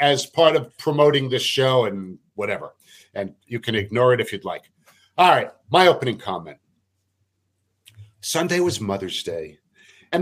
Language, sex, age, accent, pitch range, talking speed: English, male, 50-69, American, 125-170 Hz, 155 wpm